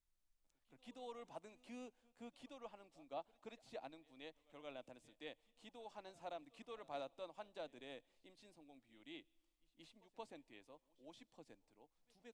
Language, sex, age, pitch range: Korean, male, 40-59, 195-280 Hz